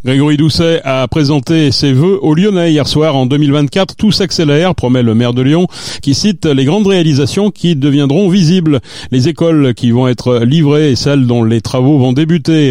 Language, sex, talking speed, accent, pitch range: French, male, 190 wpm, French, 125-160 Hz